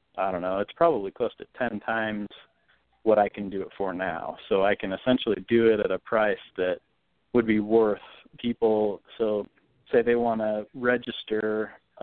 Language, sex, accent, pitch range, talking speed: English, male, American, 100-110 Hz, 180 wpm